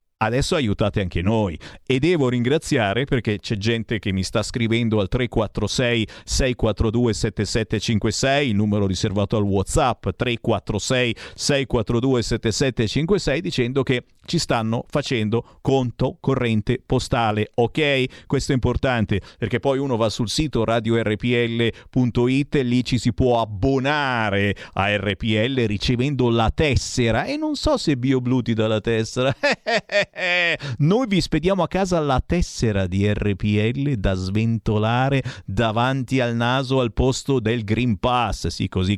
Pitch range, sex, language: 110-135 Hz, male, Italian